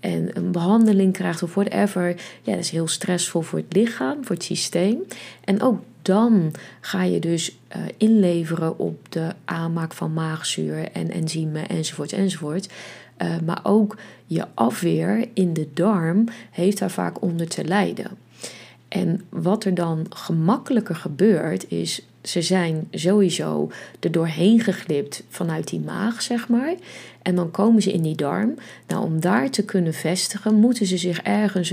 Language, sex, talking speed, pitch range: Dutch, female, 155 wpm, 165-210 Hz